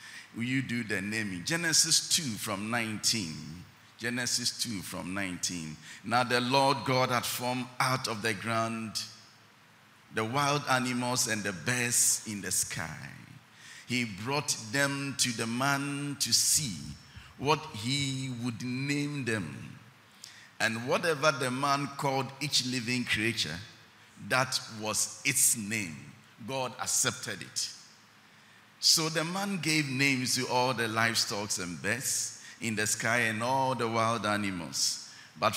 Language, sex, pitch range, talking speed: English, male, 105-130 Hz, 135 wpm